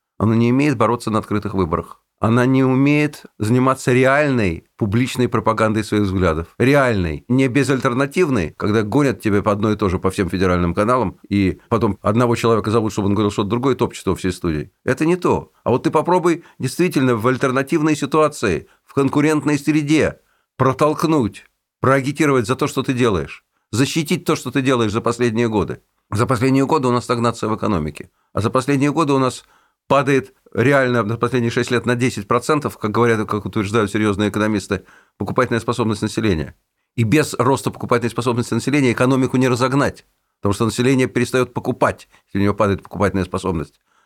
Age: 50-69